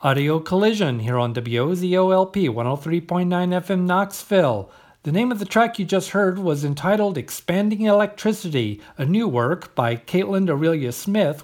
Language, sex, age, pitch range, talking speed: English, male, 50-69, 140-195 Hz, 135 wpm